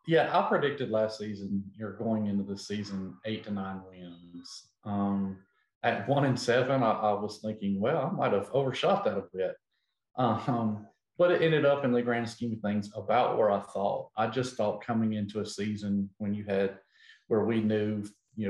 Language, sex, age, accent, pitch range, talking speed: English, male, 40-59, American, 100-120 Hz, 195 wpm